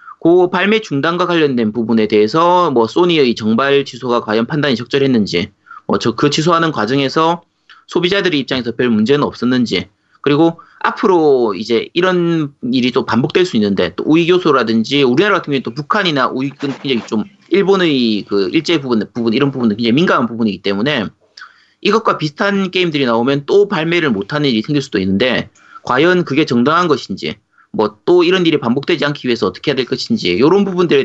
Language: Korean